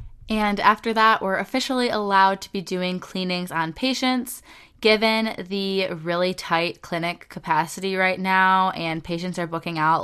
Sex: female